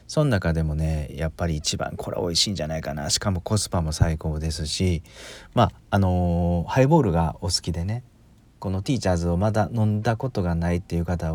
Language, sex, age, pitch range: Japanese, male, 40-59, 85-110 Hz